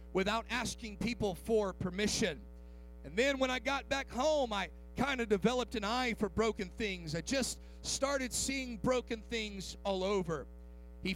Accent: American